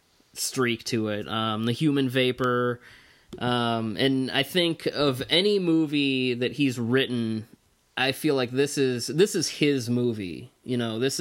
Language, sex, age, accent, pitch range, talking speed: English, male, 20-39, American, 115-140 Hz, 155 wpm